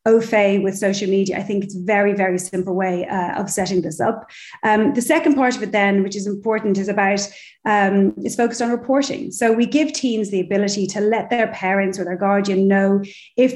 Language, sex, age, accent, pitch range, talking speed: English, female, 30-49, Irish, 190-230 Hz, 215 wpm